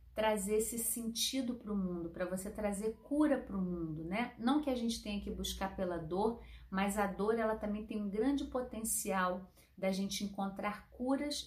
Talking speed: 190 wpm